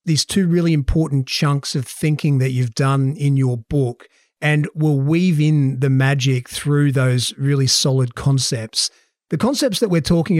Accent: Australian